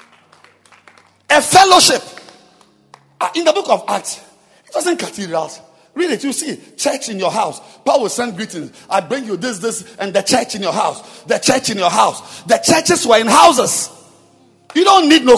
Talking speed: 185 wpm